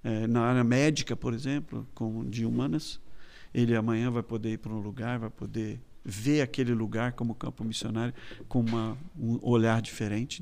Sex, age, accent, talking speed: male, 50-69, Brazilian, 175 wpm